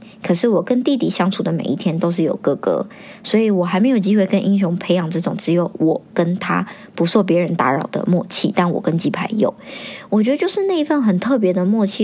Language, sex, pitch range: Chinese, male, 185-225 Hz